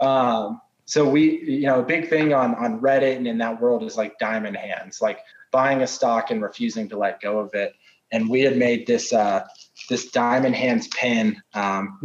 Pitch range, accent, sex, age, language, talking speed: 115-145 Hz, American, male, 20-39, English, 205 wpm